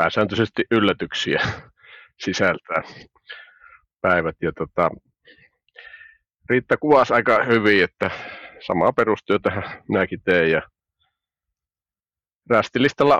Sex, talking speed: male, 75 wpm